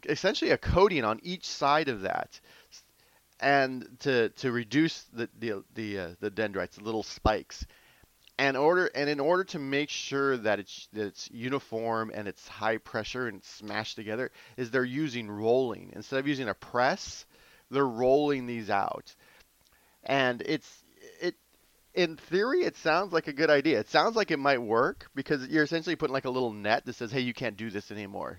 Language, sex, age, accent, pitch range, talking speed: English, male, 30-49, American, 105-135 Hz, 185 wpm